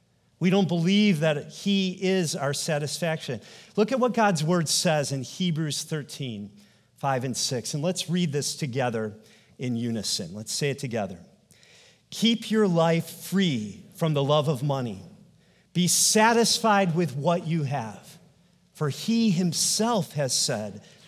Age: 40-59